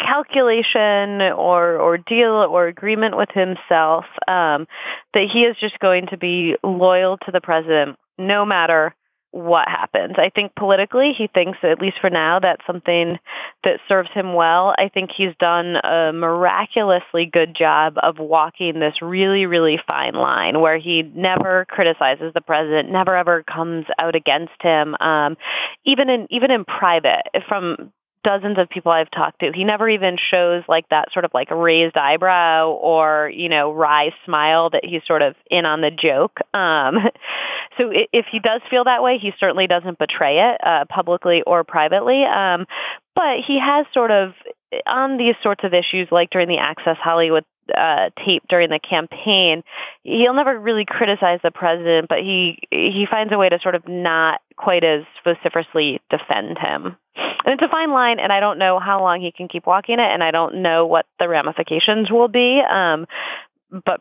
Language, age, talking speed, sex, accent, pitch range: English, 30-49, 180 wpm, female, American, 165-205 Hz